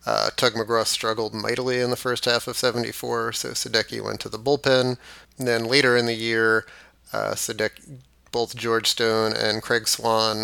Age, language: 30-49, English